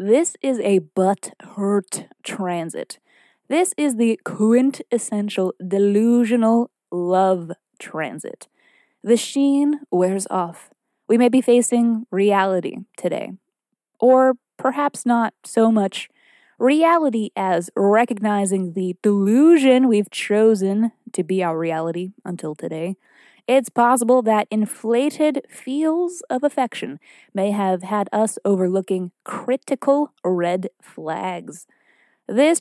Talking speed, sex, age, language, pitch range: 105 wpm, female, 20-39, English, 190-255 Hz